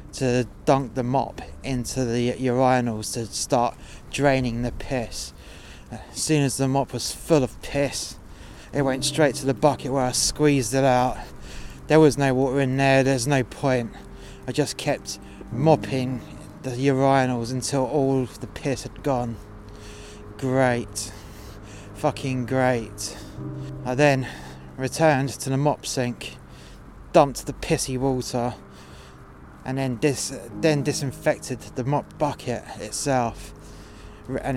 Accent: British